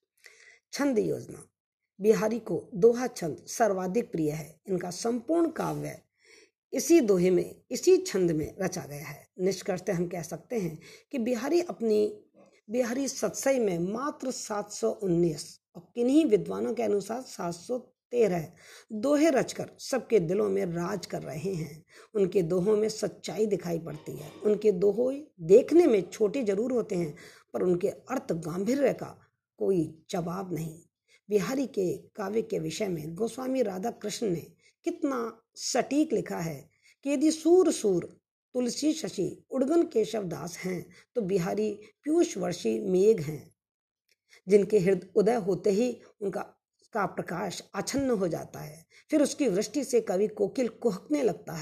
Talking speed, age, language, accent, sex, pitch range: 140 wpm, 50-69, Hindi, native, female, 180-250 Hz